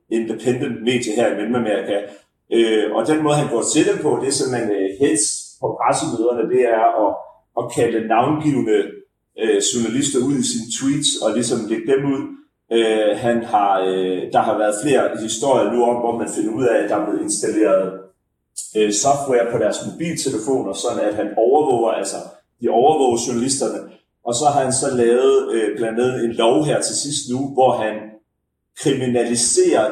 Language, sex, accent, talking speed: Danish, male, native, 180 wpm